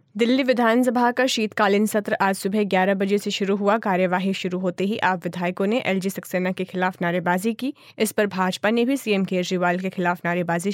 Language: Hindi